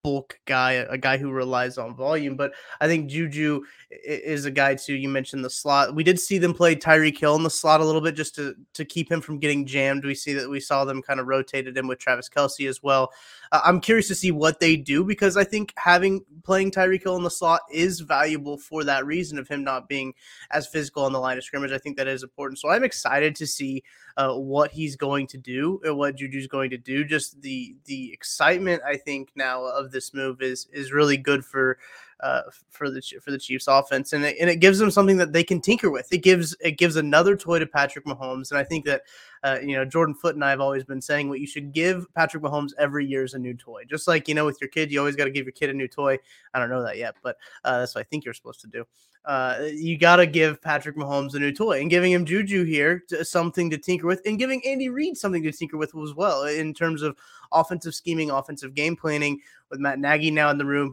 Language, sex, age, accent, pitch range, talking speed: English, male, 20-39, American, 135-170 Hz, 255 wpm